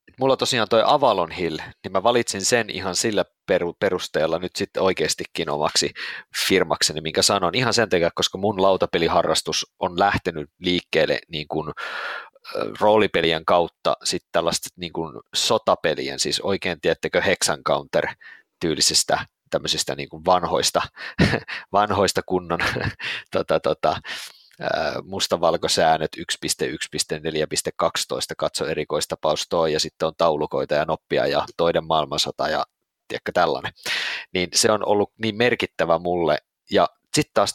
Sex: male